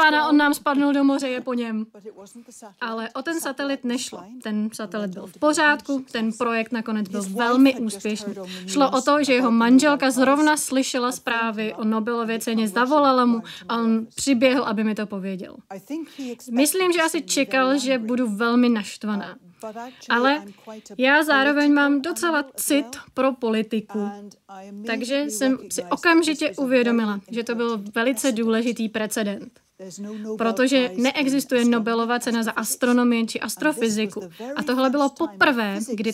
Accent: native